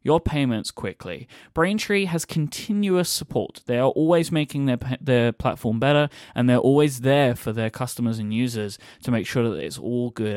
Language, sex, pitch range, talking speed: English, male, 115-165 Hz, 180 wpm